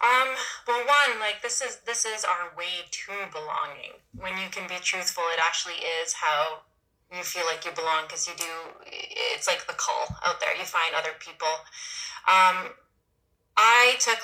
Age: 30-49